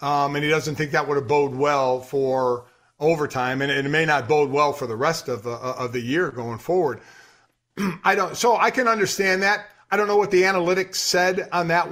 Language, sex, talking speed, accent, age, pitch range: English, male, 220 wpm, American, 50-69, 145-180 Hz